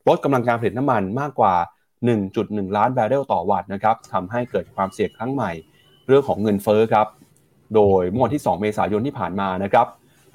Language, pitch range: Thai, 100-125 Hz